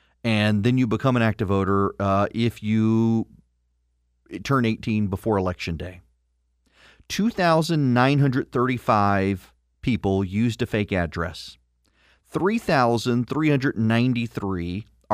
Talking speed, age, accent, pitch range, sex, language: 85 wpm, 40-59, American, 105-145 Hz, male, English